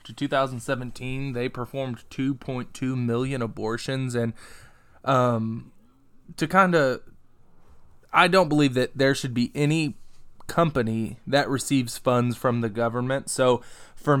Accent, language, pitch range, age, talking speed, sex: American, English, 120-150 Hz, 20-39, 125 wpm, male